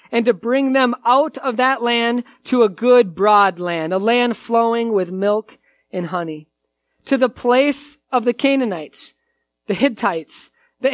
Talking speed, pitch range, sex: 160 wpm, 195-255 Hz, male